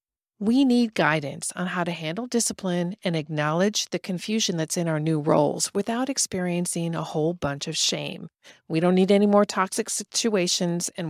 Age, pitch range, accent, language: 40-59, 160-205 Hz, American, English